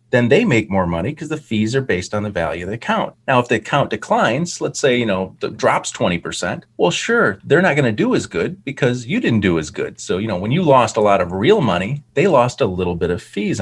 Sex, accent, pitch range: male, American, 105-135 Hz